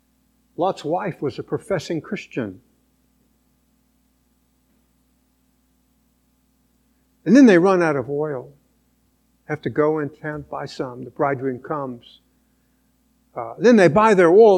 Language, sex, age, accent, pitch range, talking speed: English, male, 60-79, American, 140-220 Hz, 120 wpm